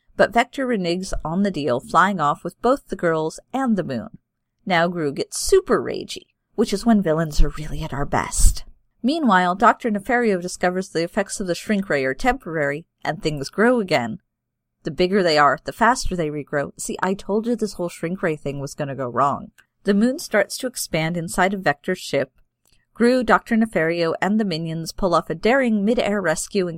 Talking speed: 200 wpm